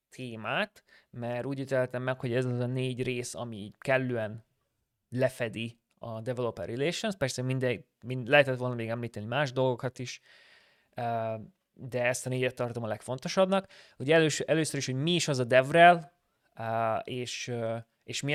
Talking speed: 155 wpm